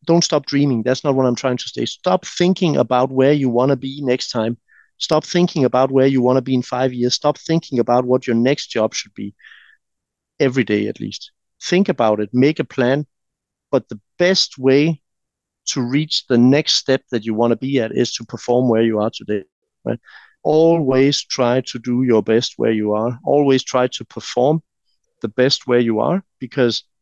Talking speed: 205 wpm